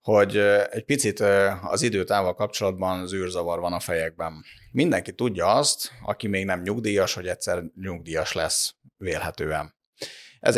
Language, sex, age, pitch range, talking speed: Hungarian, male, 30-49, 90-110 Hz, 130 wpm